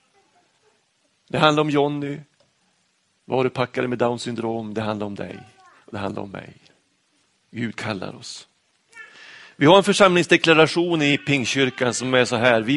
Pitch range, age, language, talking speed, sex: 110-145 Hz, 30-49, Swedish, 155 wpm, male